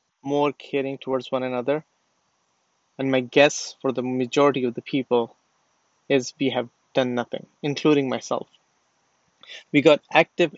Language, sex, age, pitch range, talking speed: English, male, 30-49, 130-150 Hz, 135 wpm